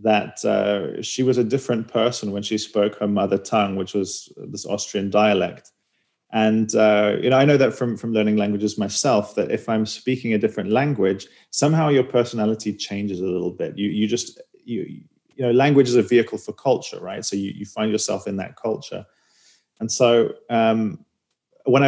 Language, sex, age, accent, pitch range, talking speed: English, male, 30-49, British, 105-120 Hz, 190 wpm